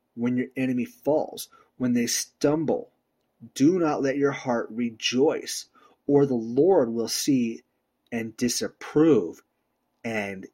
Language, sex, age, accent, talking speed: English, male, 30-49, American, 120 wpm